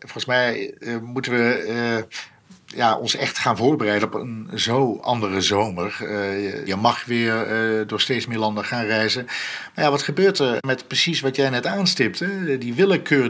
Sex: male